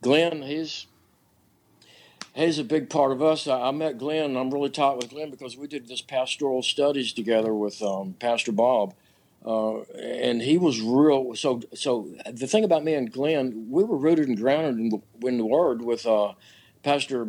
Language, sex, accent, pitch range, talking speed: English, male, American, 115-145 Hz, 185 wpm